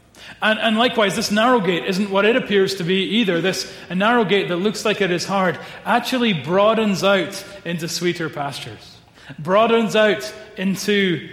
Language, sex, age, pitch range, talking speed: English, male, 30-49, 170-215 Hz, 160 wpm